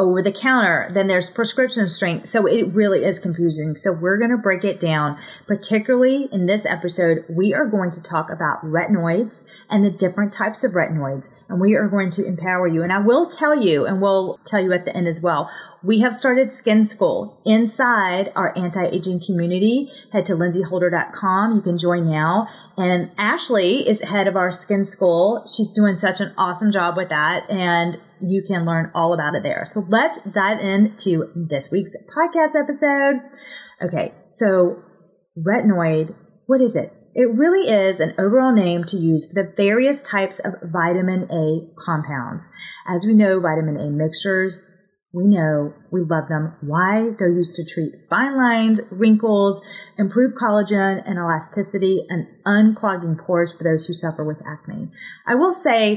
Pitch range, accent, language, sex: 175-215 Hz, American, English, female